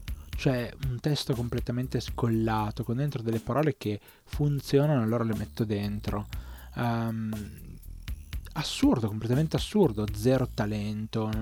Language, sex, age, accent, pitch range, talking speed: Italian, male, 20-39, native, 105-130 Hz, 110 wpm